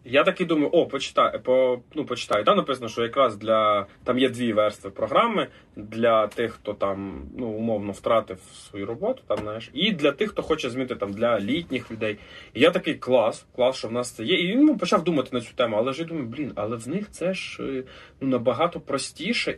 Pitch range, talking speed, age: 110-140 Hz, 210 wpm, 20-39